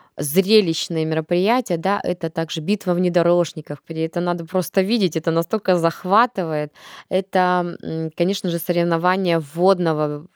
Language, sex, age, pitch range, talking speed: Russian, female, 20-39, 160-185 Hz, 115 wpm